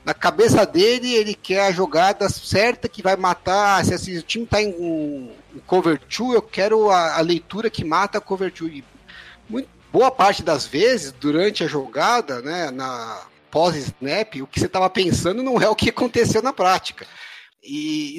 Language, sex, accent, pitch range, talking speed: Portuguese, male, Brazilian, 160-215 Hz, 185 wpm